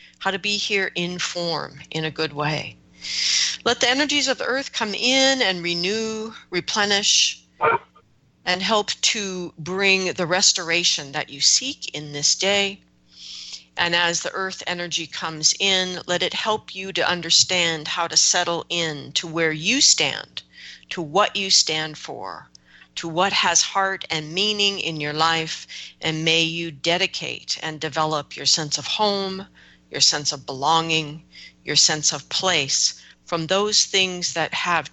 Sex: female